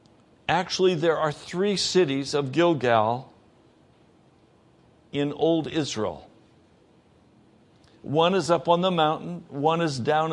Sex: male